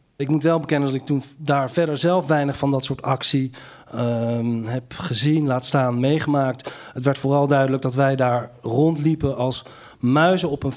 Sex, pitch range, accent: male, 125-150 Hz, Dutch